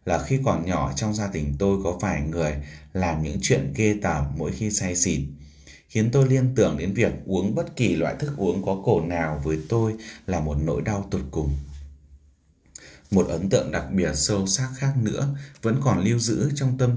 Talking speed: 205 wpm